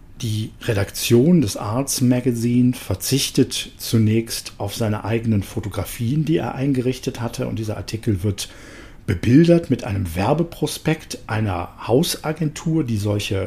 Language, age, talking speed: German, 50-69, 120 wpm